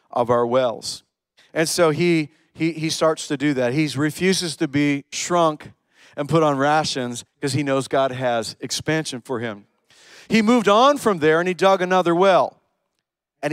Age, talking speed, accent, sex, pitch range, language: 40-59, 175 wpm, American, male, 145-175 Hz, English